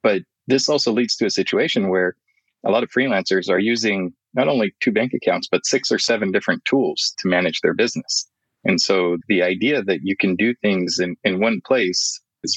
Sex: male